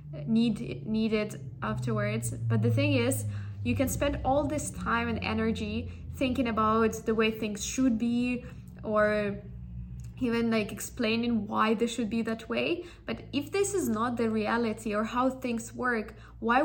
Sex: female